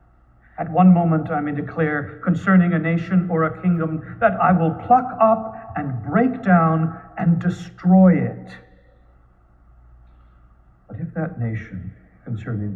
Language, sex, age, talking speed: English, male, 60-79, 130 wpm